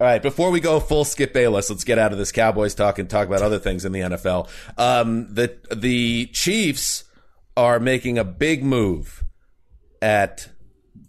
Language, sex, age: English, male, 40-59